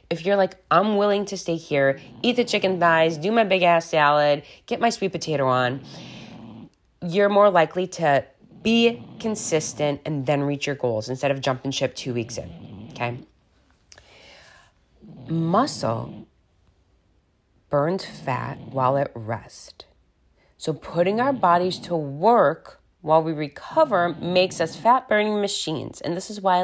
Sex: female